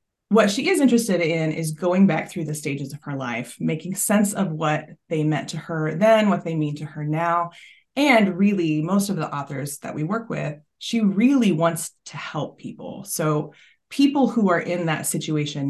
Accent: American